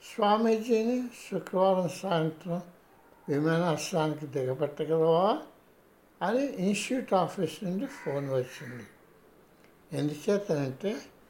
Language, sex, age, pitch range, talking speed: Telugu, male, 60-79, 150-230 Hz, 65 wpm